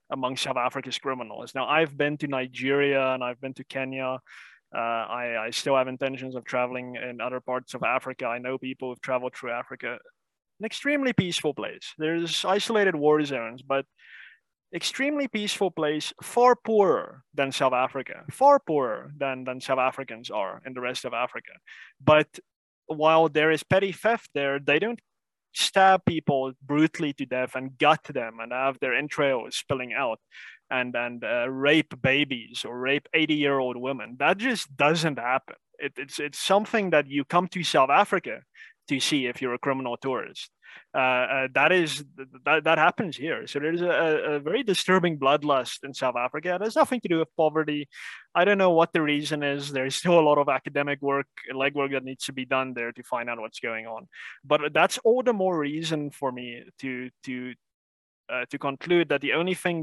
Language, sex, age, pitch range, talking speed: English, male, 20-39, 130-160 Hz, 190 wpm